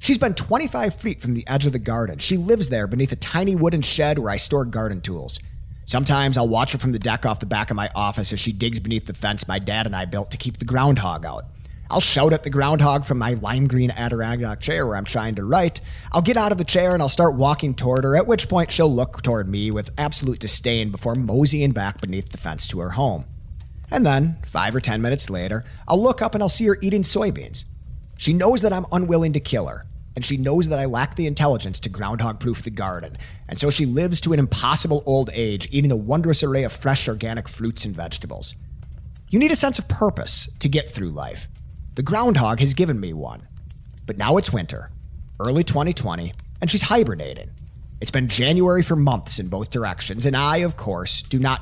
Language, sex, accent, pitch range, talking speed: English, male, American, 105-150 Hz, 225 wpm